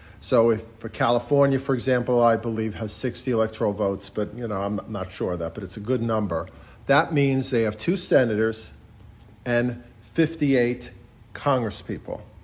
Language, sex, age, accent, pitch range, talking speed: English, male, 50-69, American, 110-140 Hz, 165 wpm